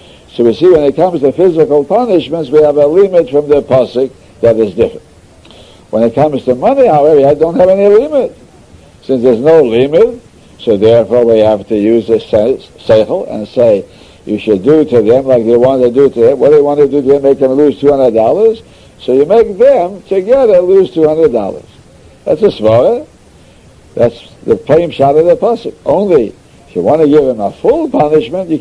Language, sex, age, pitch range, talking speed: English, male, 60-79, 130-185 Hz, 200 wpm